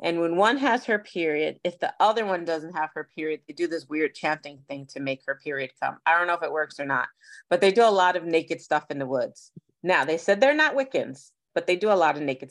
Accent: American